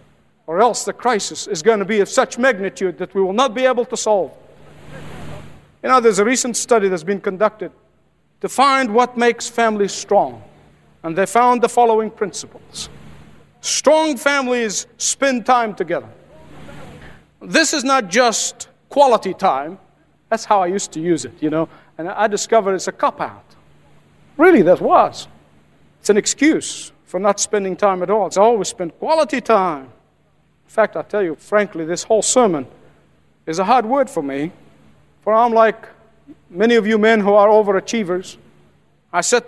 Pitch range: 190-245 Hz